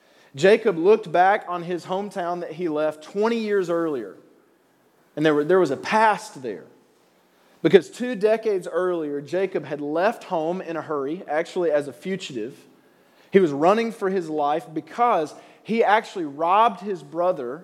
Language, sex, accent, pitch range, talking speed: English, male, American, 155-195 Hz, 155 wpm